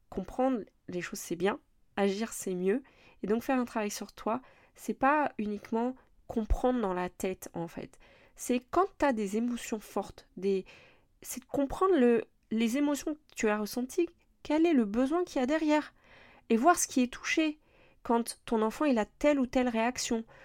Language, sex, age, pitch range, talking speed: French, female, 30-49, 200-270 Hz, 190 wpm